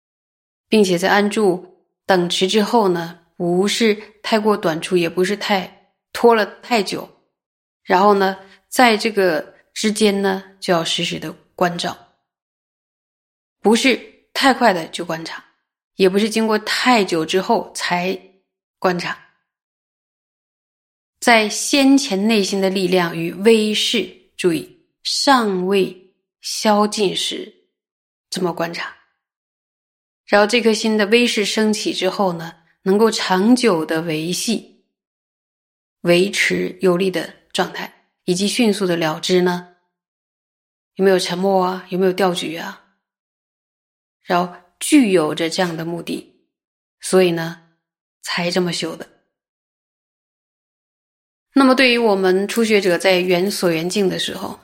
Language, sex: Chinese, female